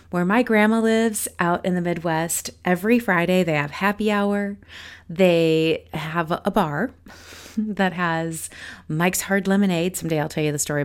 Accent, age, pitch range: American, 30-49, 165-215 Hz